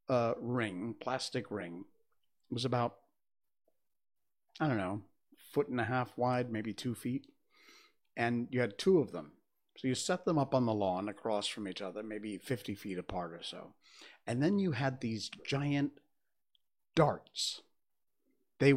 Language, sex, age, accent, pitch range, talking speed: English, male, 50-69, American, 110-140 Hz, 160 wpm